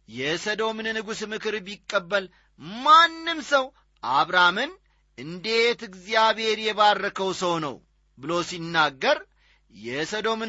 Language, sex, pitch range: Amharic, male, 155-220 Hz